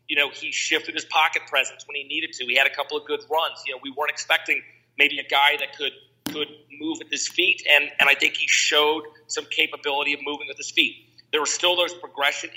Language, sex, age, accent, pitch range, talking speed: English, male, 40-59, American, 140-160 Hz, 245 wpm